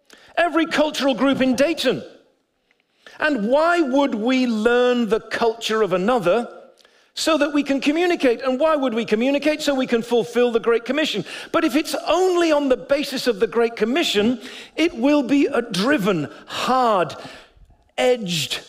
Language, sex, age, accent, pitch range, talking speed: English, male, 50-69, British, 215-285 Hz, 155 wpm